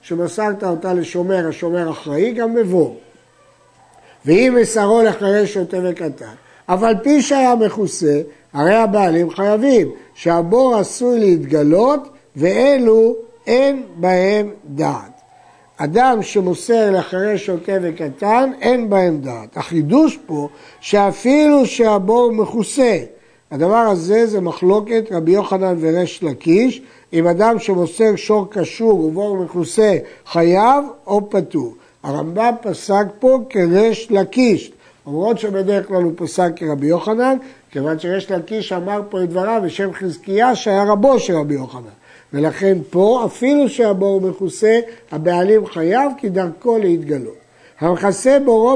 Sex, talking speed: male, 115 wpm